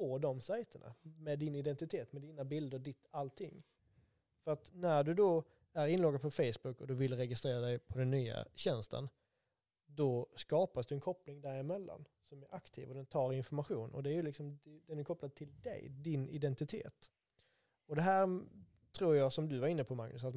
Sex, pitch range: male, 135-170 Hz